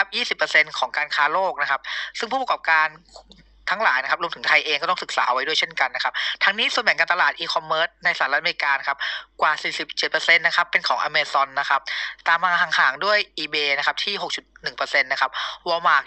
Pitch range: 140-195 Hz